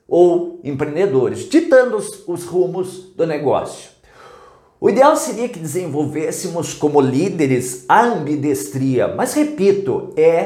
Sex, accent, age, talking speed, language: male, Brazilian, 50-69, 115 wpm, English